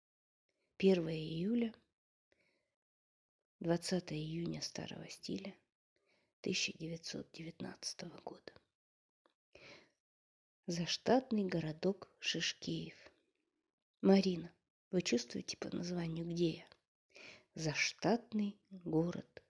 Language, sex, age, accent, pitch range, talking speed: Russian, female, 20-39, native, 170-195 Hz, 60 wpm